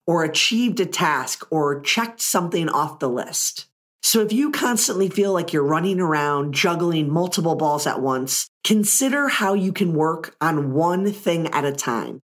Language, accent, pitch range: English, American, 155-225 Hz